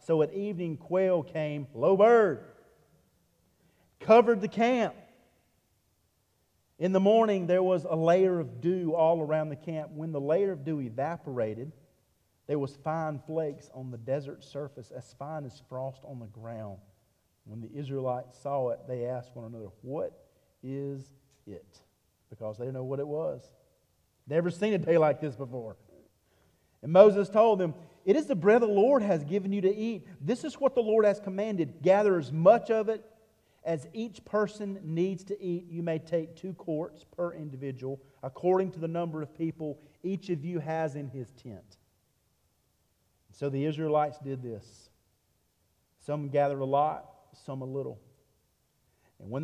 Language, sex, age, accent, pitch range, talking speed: English, male, 40-59, American, 130-175 Hz, 165 wpm